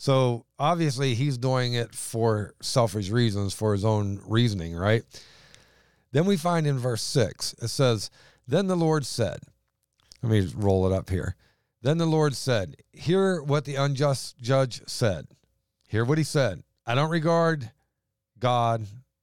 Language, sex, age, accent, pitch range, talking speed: English, male, 50-69, American, 115-140 Hz, 155 wpm